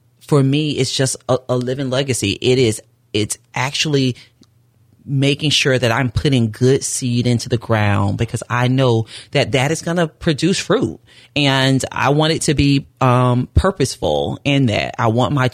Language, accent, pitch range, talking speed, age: English, American, 115-135 Hz, 175 wpm, 30-49